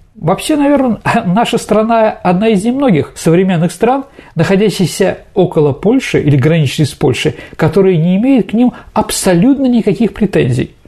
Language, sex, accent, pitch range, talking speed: Russian, male, native, 145-210 Hz, 140 wpm